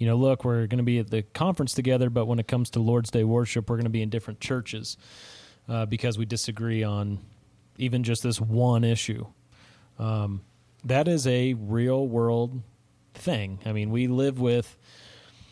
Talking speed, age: 185 wpm, 30-49